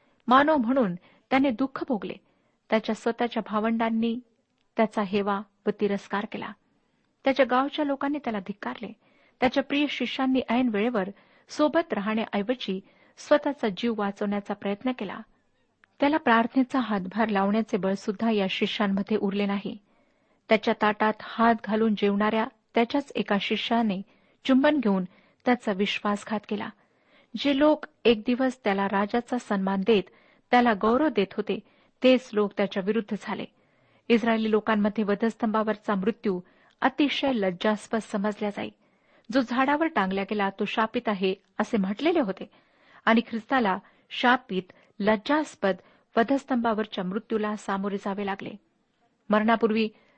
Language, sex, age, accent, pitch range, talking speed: Marathi, female, 50-69, native, 205-255 Hz, 115 wpm